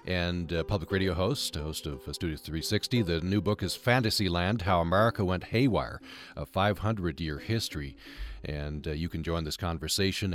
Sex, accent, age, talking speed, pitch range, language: male, American, 40-59, 170 wpm, 85-110 Hz, English